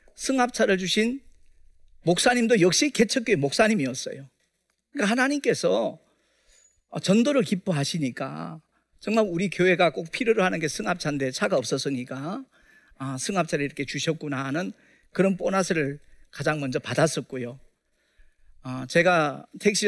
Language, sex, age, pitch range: Korean, male, 40-59, 130-185 Hz